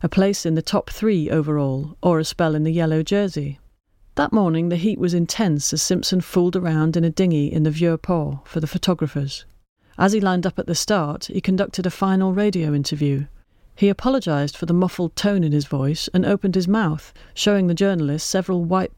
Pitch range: 155-190 Hz